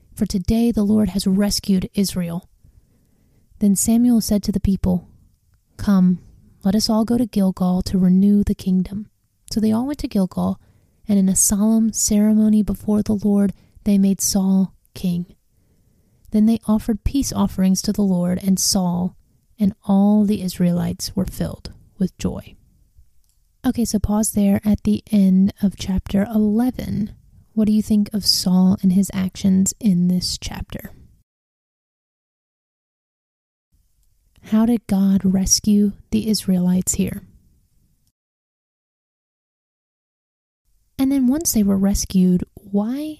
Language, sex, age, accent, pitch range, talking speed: English, female, 30-49, American, 180-210 Hz, 135 wpm